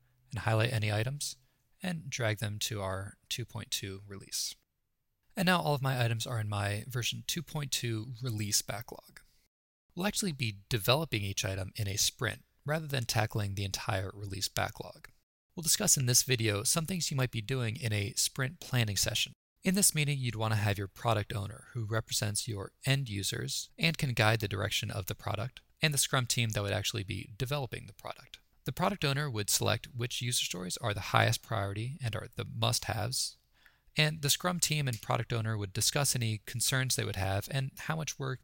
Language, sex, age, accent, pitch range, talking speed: English, male, 20-39, American, 110-135 Hz, 195 wpm